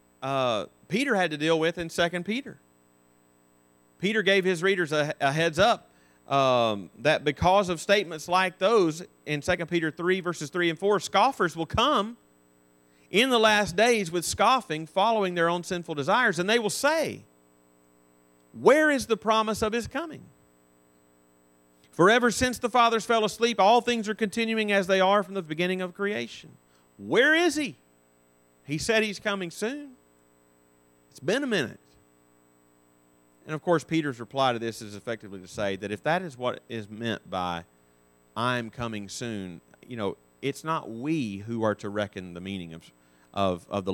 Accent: American